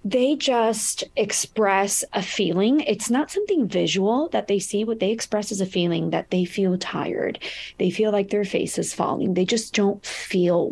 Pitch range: 170-205 Hz